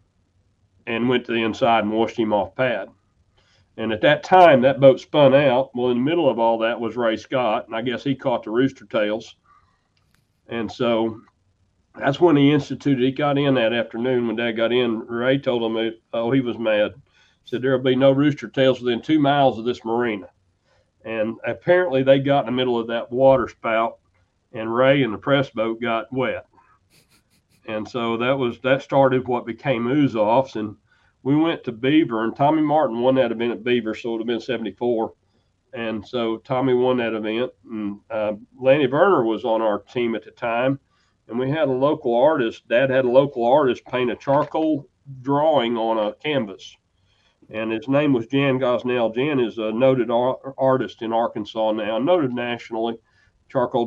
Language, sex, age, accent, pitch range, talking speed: English, male, 40-59, American, 110-130 Hz, 195 wpm